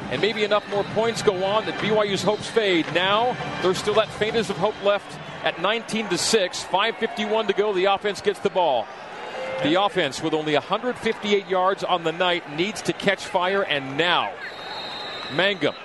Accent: American